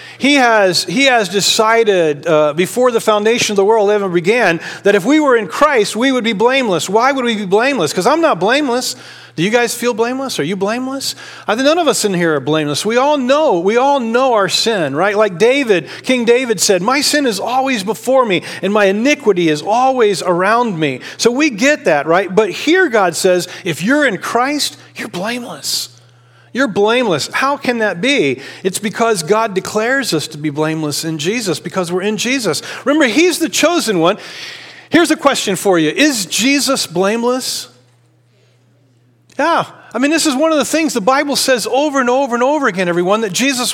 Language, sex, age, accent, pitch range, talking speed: English, male, 40-59, American, 185-265 Hz, 200 wpm